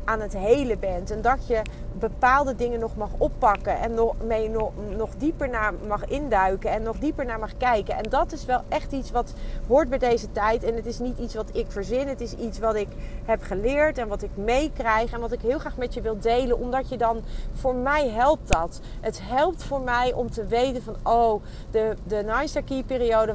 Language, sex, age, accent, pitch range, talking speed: Dutch, female, 40-59, Dutch, 200-245 Hz, 220 wpm